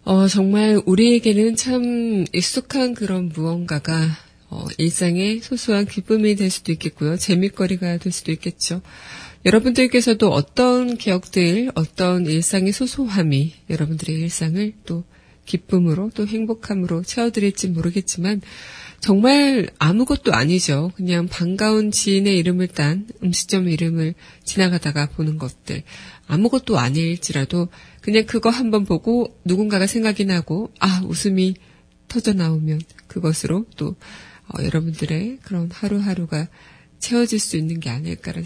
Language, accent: Korean, native